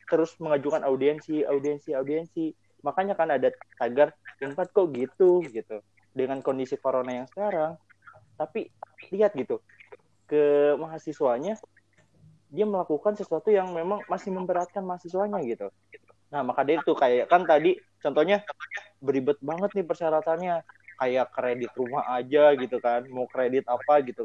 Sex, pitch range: male, 135-190 Hz